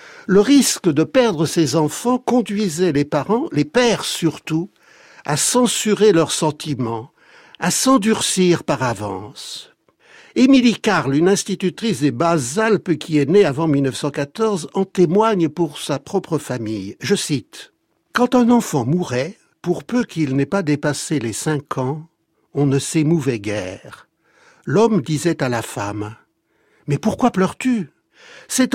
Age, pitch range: 60-79, 135-205 Hz